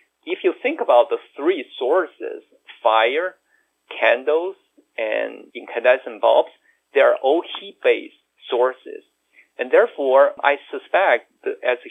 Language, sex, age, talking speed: English, male, 50-69, 120 wpm